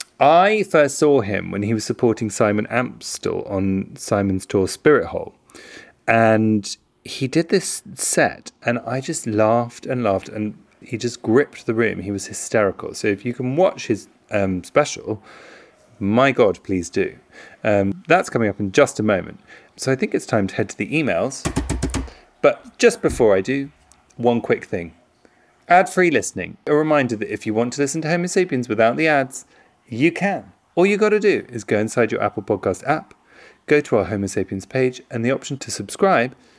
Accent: British